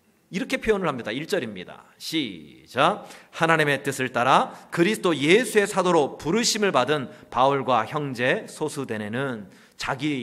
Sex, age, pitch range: male, 40-59, 165-245 Hz